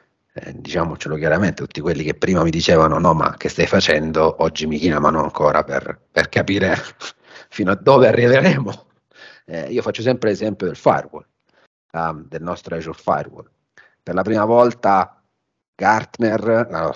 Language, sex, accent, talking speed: Italian, male, native, 150 wpm